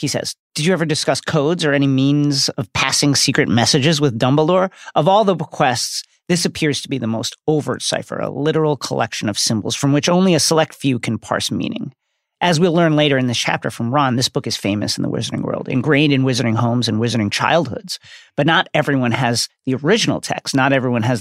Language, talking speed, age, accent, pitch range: English, 215 wpm, 40-59, American, 115-150 Hz